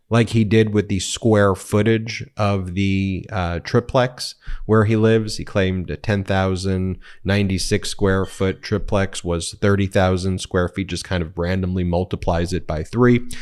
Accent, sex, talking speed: American, male, 150 wpm